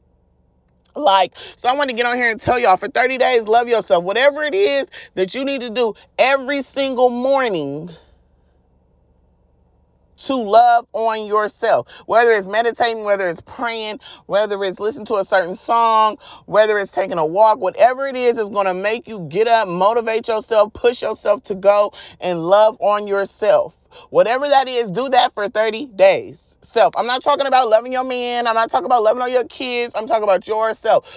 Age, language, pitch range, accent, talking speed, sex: 30-49, English, 185-250 Hz, American, 185 wpm, male